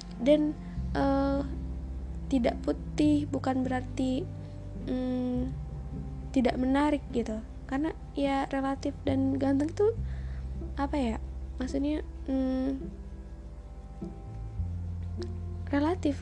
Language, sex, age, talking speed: Indonesian, female, 20-39, 80 wpm